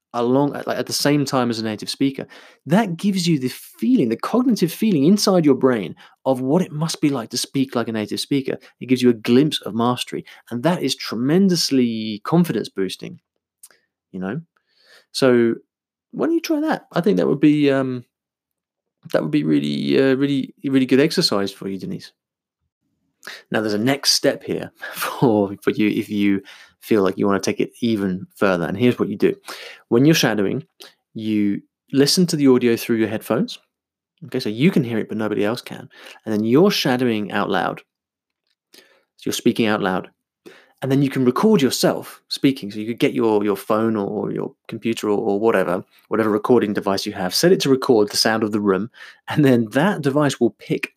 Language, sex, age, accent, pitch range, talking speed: English, male, 20-39, British, 105-145 Hz, 200 wpm